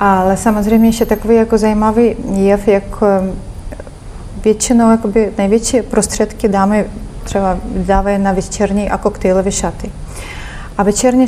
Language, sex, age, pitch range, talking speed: Czech, female, 30-49, 195-220 Hz, 115 wpm